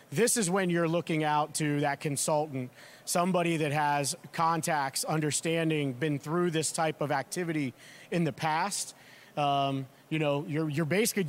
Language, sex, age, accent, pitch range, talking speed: English, male, 40-59, American, 145-175 Hz, 155 wpm